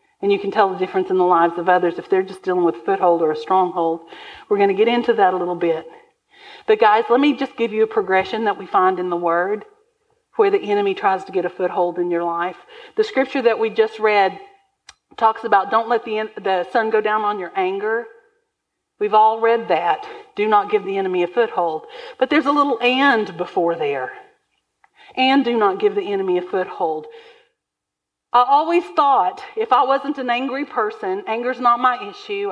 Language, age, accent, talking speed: English, 50-69, American, 210 wpm